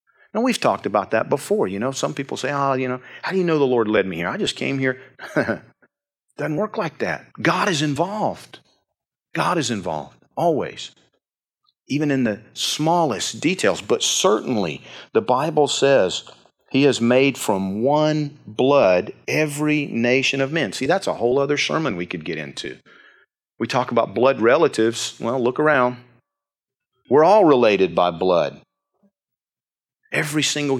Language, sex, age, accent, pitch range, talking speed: English, male, 40-59, American, 125-170 Hz, 160 wpm